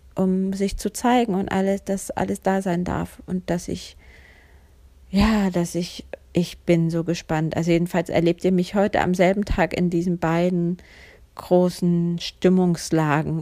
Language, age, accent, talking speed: German, 40-59, German, 155 wpm